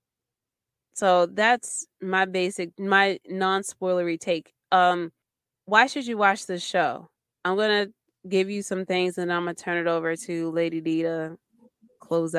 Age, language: 20-39, English